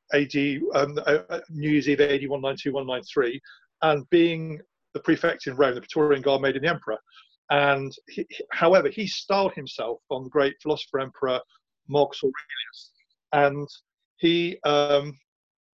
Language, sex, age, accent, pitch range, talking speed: English, male, 40-59, British, 140-170 Hz, 145 wpm